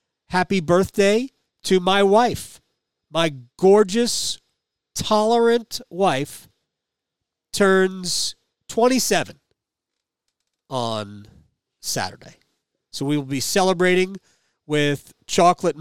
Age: 40-59